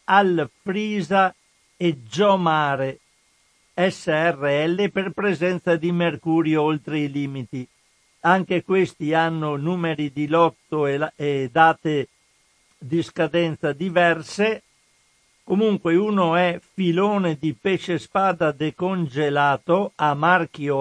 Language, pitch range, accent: Italian, 145-180 Hz, native